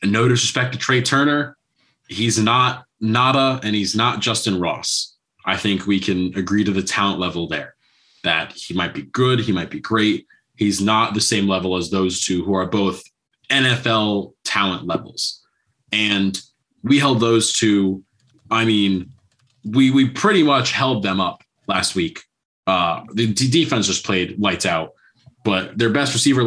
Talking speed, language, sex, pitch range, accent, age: 170 wpm, English, male, 100-125 Hz, American, 20-39